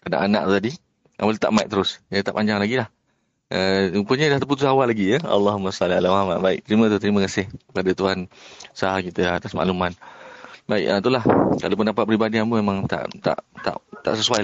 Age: 30-49